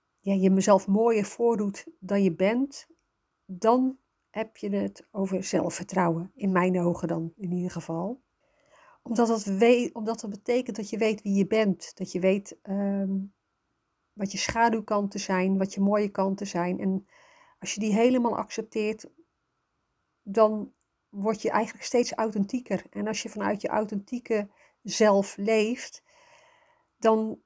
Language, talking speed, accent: Dutch, 150 wpm, Dutch